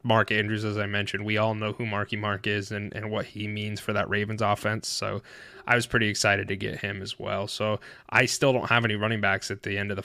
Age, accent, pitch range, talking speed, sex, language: 20-39, American, 105-120 Hz, 265 wpm, male, English